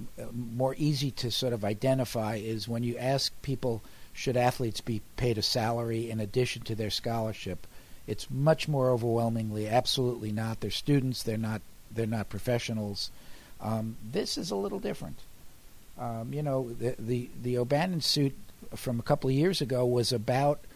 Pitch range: 110-145 Hz